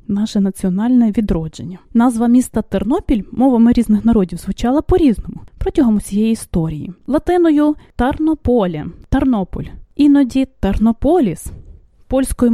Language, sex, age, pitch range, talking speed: English, female, 20-39, 205-280 Hz, 105 wpm